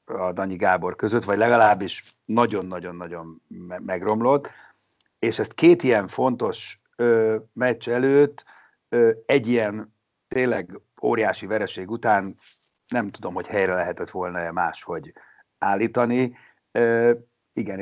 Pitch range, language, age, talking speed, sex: 95-125 Hz, Hungarian, 60-79, 110 wpm, male